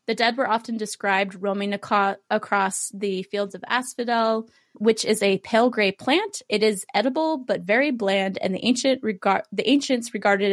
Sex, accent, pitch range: female, American, 195-245 Hz